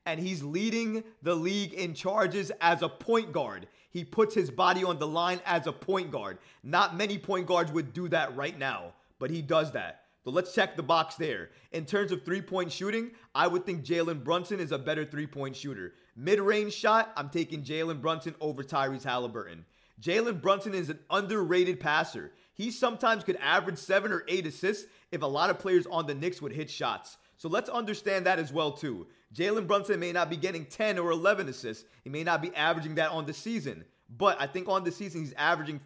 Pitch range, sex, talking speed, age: 155-195 Hz, male, 210 wpm, 30-49